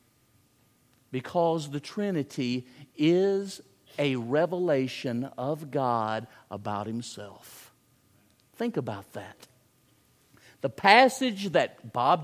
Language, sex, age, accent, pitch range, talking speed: English, male, 50-69, American, 150-235 Hz, 85 wpm